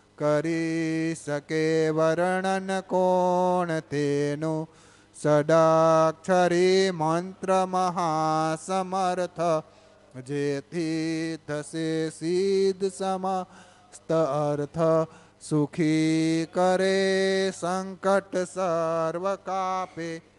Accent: native